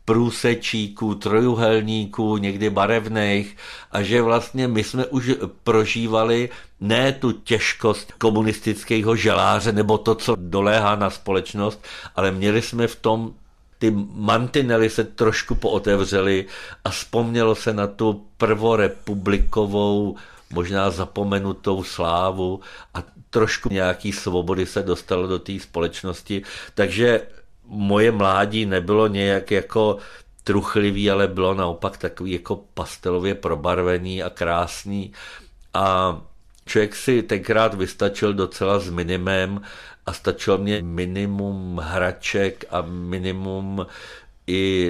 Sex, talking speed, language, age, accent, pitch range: male, 110 wpm, Czech, 50-69, native, 95-110 Hz